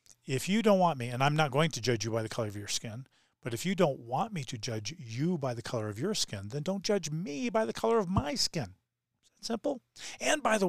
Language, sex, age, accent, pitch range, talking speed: English, male, 40-59, American, 120-165 Hz, 270 wpm